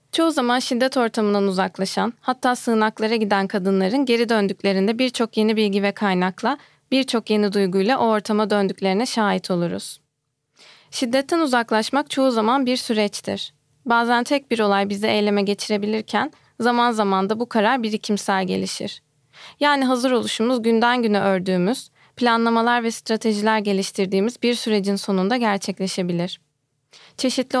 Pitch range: 195-230 Hz